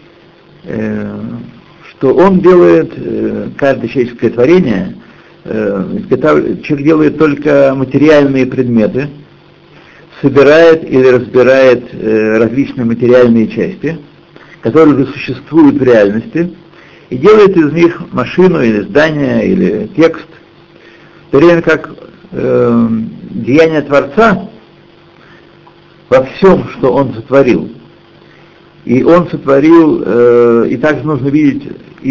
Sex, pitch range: male, 125-165 Hz